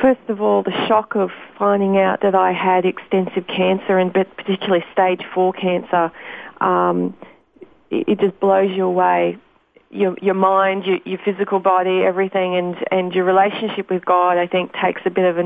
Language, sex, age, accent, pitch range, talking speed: English, female, 30-49, Australian, 175-195 Hz, 175 wpm